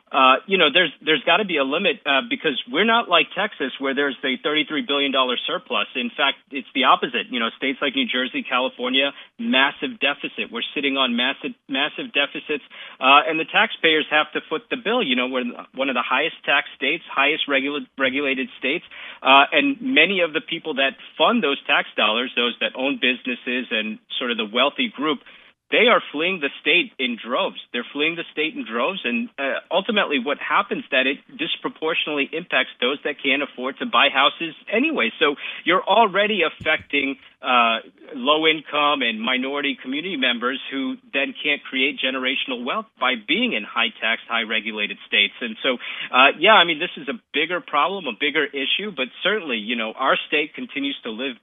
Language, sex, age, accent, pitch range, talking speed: English, male, 40-59, American, 135-210 Hz, 190 wpm